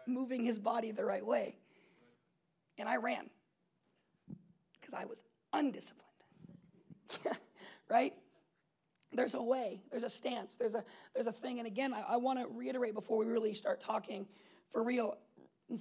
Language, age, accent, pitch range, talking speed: English, 40-59, American, 205-245 Hz, 150 wpm